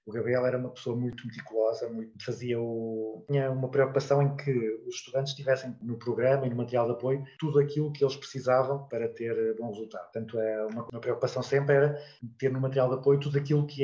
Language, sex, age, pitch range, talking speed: Portuguese, male, 20-39, 105-135 Hz, 205 wpm